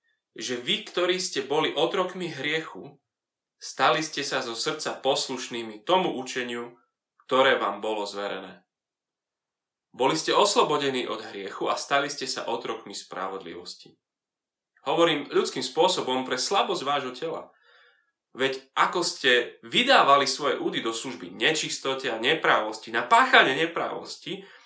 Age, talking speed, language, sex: 30-49, 120 wpm, Slovak, male